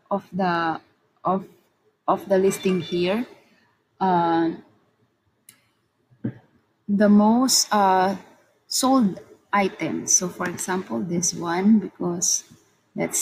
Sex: female